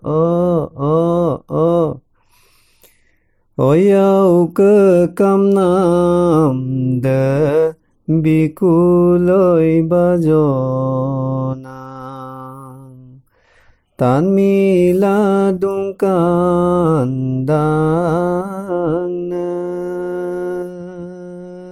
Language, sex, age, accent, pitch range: English, male, 30-49, Indian, 140-180 Hz